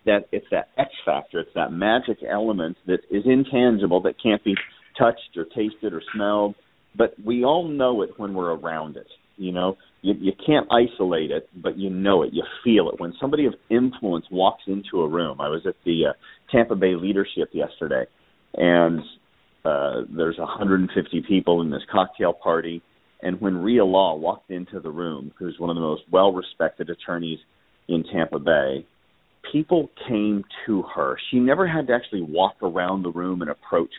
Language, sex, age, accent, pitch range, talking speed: English, male, 40-59, American, 90-120 Hz, 180 wpm